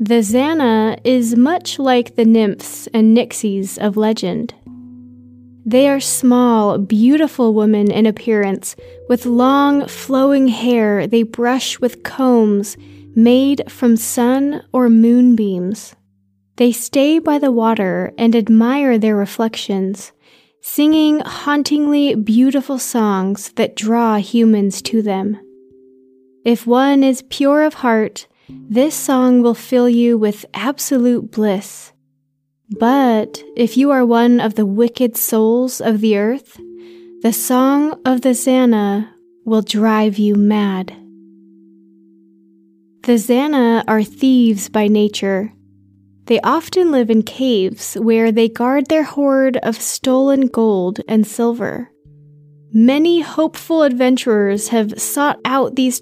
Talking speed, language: 120 wpm, English